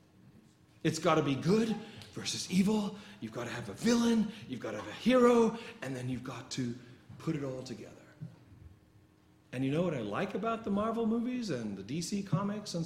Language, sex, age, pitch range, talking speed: English, male, 40-59, 130-210 Hz, 200 wpm